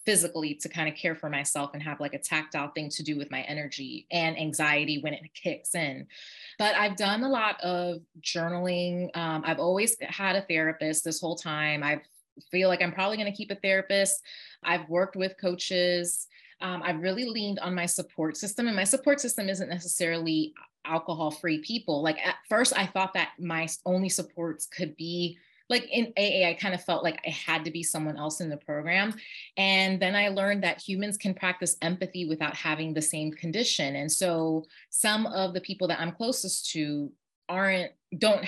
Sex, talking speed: female, 195 wpm